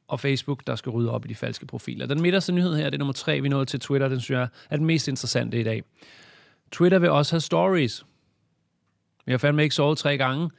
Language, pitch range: Danish, 125-150 Hz